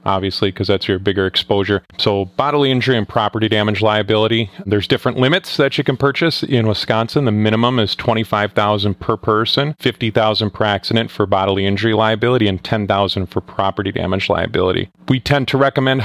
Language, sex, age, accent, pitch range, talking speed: English, male, 30-49, American, 100-125 Hz, 170 wpm